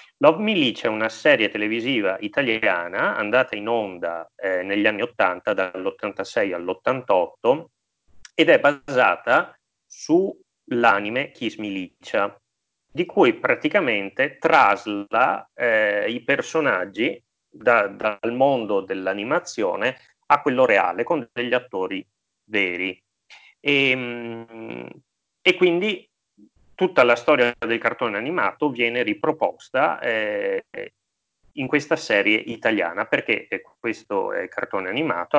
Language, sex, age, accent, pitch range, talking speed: Italian, male, 30-49, native, 95-140 Hz, 105 wpm